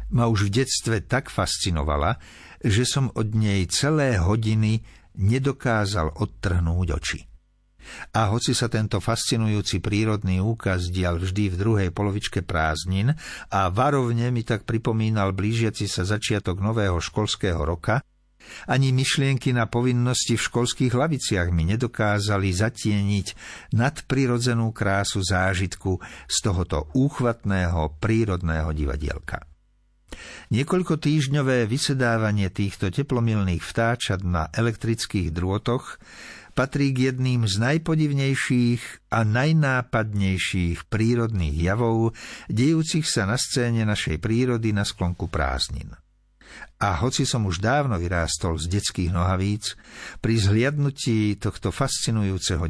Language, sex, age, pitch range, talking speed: Slovak, male, 60-79, 95-120 Hz, 110 wpm